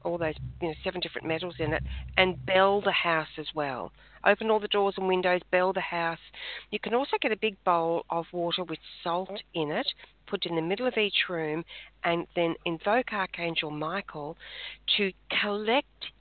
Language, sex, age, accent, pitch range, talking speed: English, female, 40-59, Australian, 150-210 Hz, 180 wpm